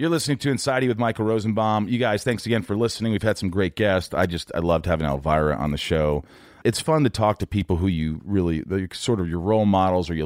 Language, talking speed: English, 250 wpm